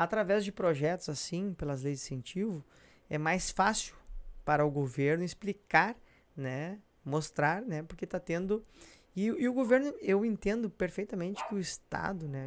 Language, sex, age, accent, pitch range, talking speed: Portuguese, male, 20-39, Brazilian, 135-190 Hz, 155 wpm